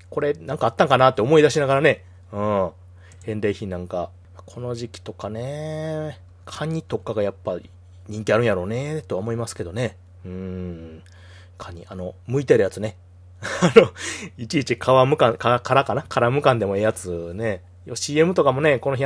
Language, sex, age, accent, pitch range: Japanese, male, 30-49, native, 90-130 Hz